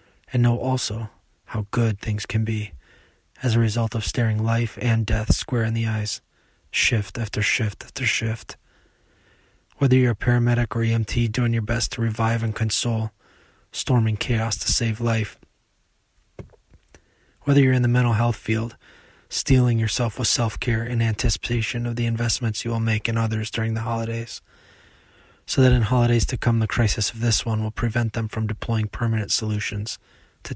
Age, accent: 20-39, American